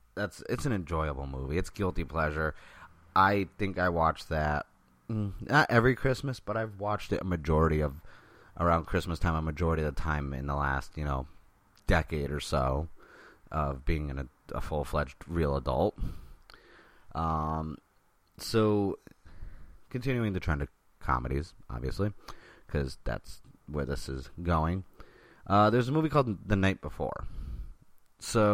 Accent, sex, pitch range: American, male, 75-100 Hz